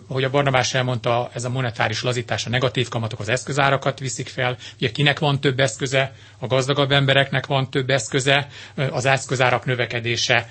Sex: male